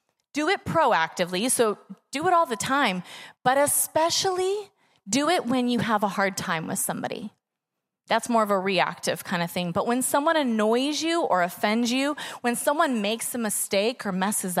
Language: English